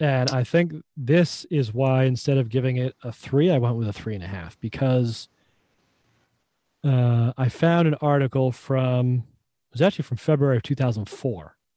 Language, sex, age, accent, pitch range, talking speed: English, male, 30-49, American, 115-145 Hz, 175 wpm